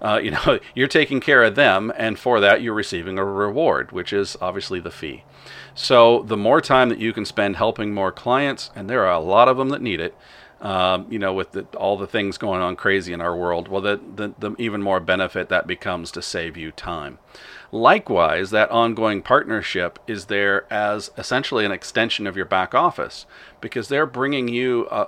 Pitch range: 95-120 Hz